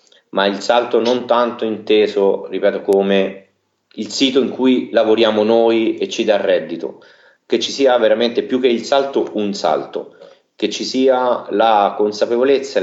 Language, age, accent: Italian, 30-49, native